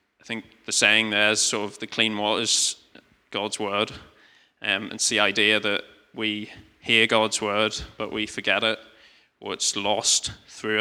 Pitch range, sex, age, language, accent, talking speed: 105-115 Hz, male, 20-39, English, British, 170 wpm